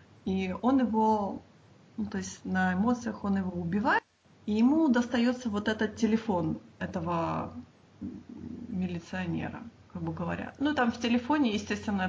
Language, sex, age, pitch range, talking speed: Russian, female, 20-39, 180-230 Hz, 135 wpm